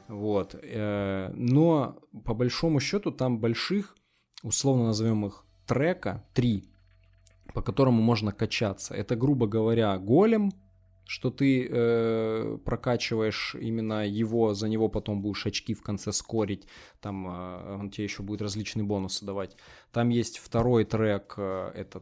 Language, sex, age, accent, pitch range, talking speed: Russian, male, 20-39, native, 100-125 Hz, 130 wpm